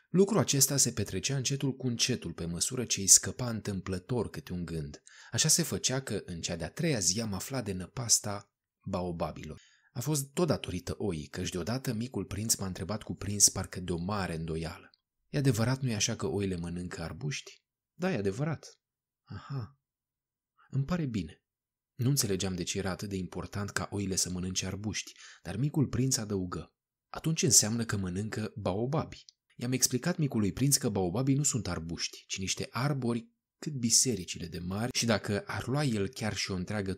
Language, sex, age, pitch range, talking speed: Romanian, male, 20-39, 95-130 Hz, 180 wpm